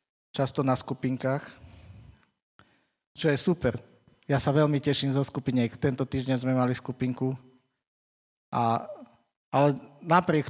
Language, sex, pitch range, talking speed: Slovak, male, 120-140 Hz, 115 wpm